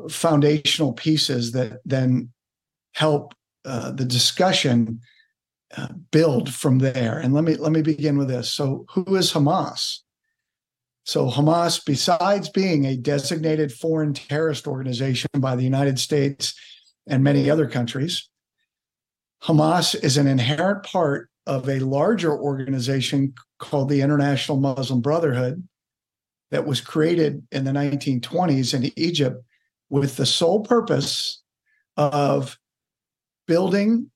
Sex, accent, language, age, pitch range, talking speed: male, American, English, 50-69, 135-165 Hz, 120 wpm